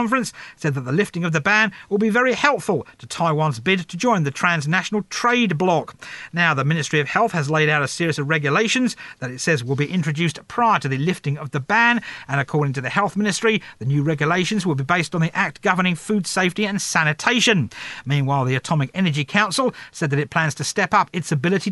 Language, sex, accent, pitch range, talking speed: English, male, British, 150-215 Hz, 220 wpm